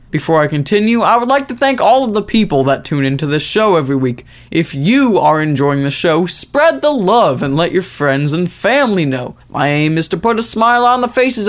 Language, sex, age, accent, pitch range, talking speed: English, male, 20-39, American, 150-230 Hz, 235 wpm